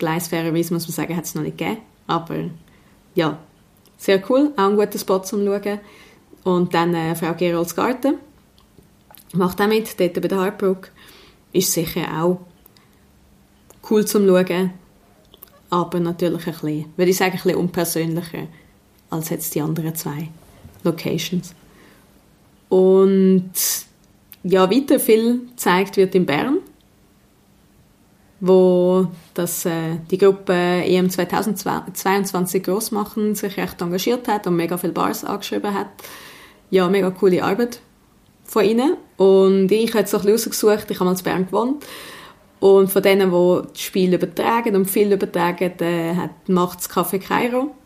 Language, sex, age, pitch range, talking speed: German, female, 30-49, 175-210 Hz, 140 wpm